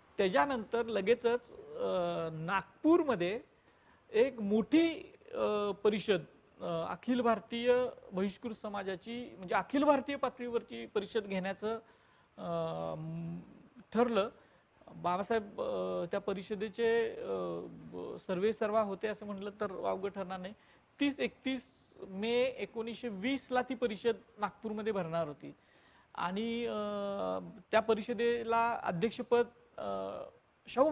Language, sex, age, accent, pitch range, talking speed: Marathi, male, 40-59, native, 185-235 Hz, 85 wpm